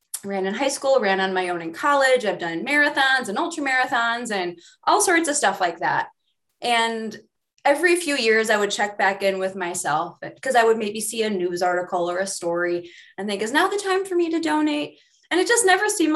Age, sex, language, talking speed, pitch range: 20-39, female, English, 225 wpm, 190-270 Hz